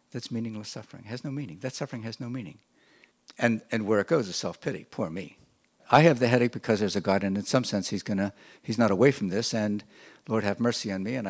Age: 60-79